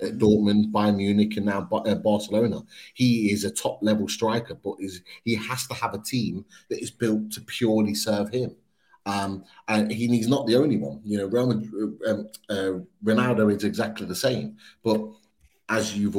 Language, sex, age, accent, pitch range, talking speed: English, male, 30-49, British, 95-115 Hz, 160 wpm